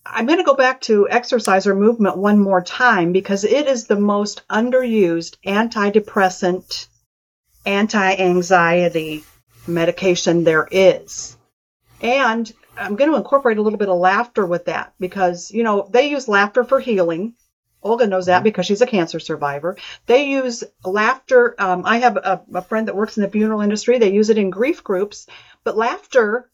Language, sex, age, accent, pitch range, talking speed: English, female, 50-69, American, 185-240 Hz, 165 wpm